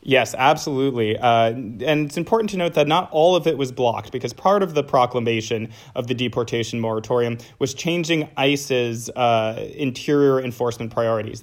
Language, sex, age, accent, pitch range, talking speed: English, male, 20-39, American, 115-140 Hz, 165 wpm